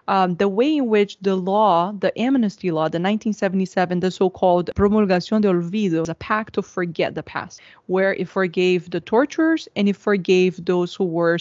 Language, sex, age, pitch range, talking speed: English, female, 20-39, 180-215 Hz, 180 wpm